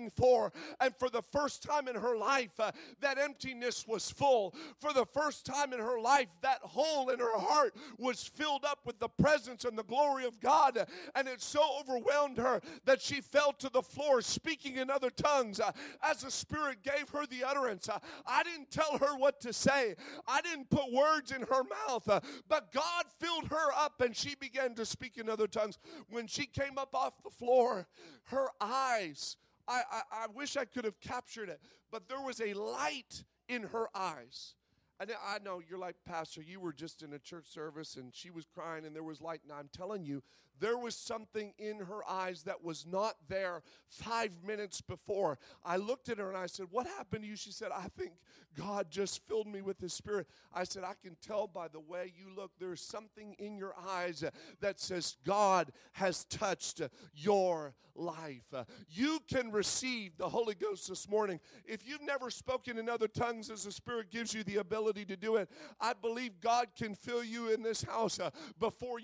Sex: male